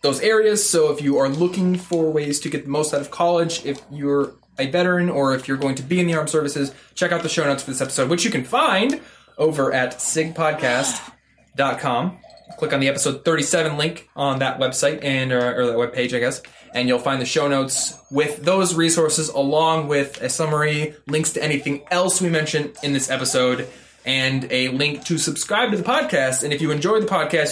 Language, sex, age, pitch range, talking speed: English, male, 20-39, 130-155 Hz, 210 wpm